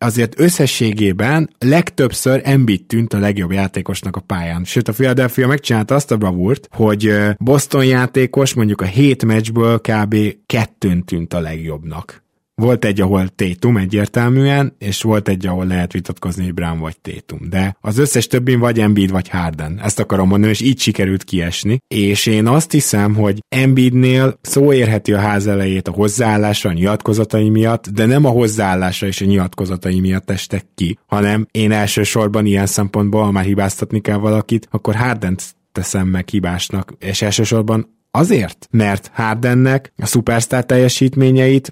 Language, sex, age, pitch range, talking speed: Hungarian, male, 20-39, 95-125 Hz, 150 wpm